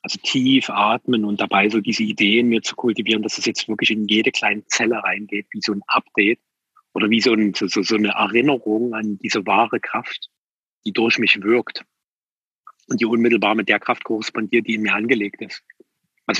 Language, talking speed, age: German, 195 wpm, 40-59